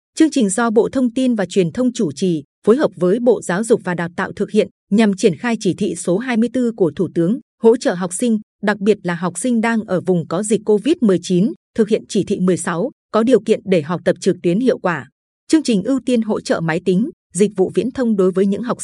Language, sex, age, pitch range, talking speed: Vietnamese, female, 20-39, 185-230 Hz, 250 wpm